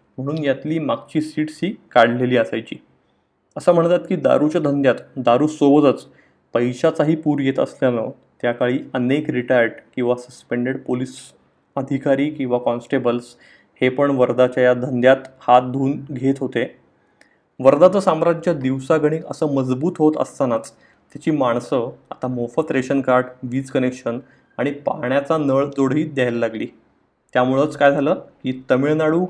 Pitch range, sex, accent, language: 125-150 Hz, male, native, Marathi